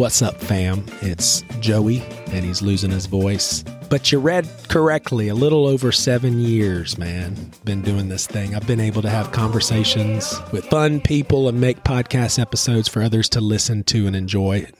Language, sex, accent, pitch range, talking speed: English, male, American, 100-125 Hz, 180 wpm